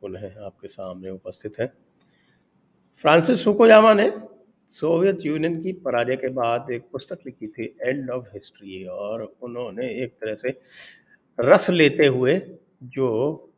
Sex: male